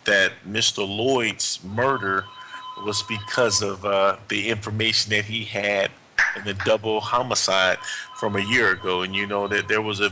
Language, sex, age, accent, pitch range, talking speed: English, male, 30-49, American, 100-125 Hz, 165 wpm